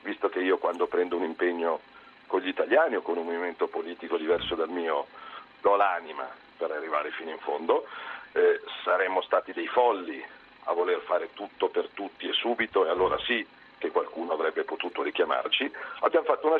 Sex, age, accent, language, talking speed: male, 50-69, native, Italian, 175 wpm